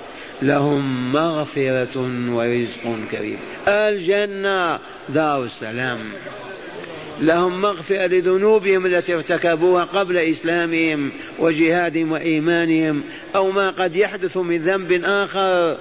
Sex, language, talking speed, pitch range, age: male, Arabic, 85 wpm, 145-185 Hz, 50-69